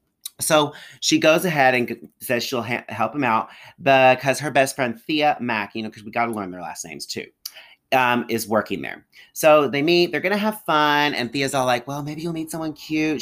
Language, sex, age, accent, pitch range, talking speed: English, male, 30-49, American, 120-155 Hz, 225 wpm